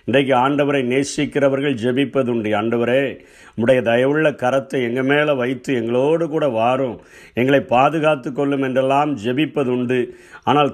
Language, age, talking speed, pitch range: Tamil, 50-69, 110 wpm, 130-150 Hz